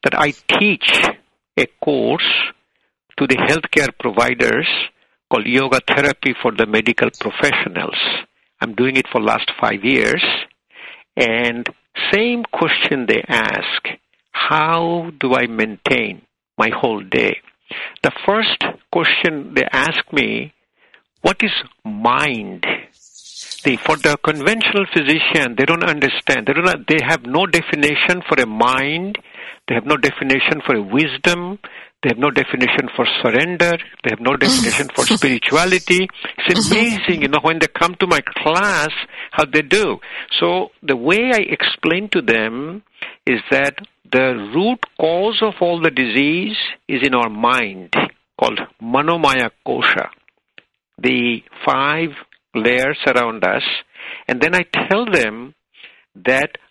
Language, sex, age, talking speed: English, male, 60-79, 135 wpm